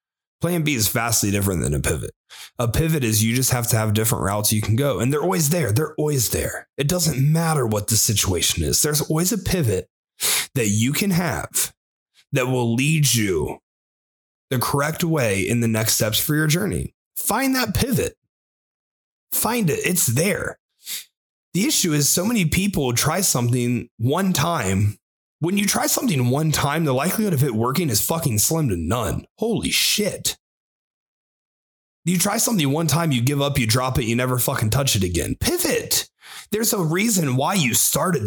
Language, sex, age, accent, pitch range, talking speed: English, male, 30-49, American, 115-165 Hz, 180 wpm